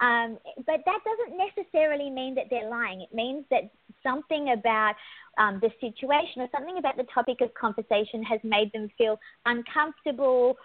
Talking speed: 165 wpm